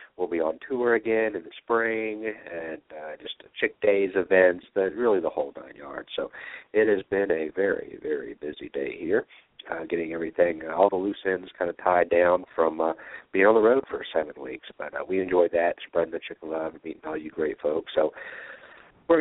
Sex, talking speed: male, 215 wpm